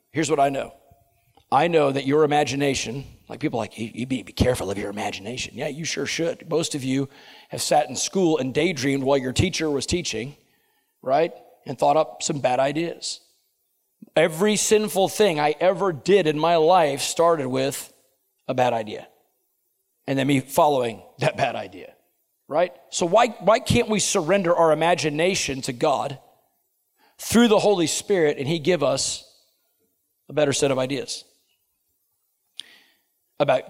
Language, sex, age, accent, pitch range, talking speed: English, male, 40-59, American, 140-185 Hz, 160 wpm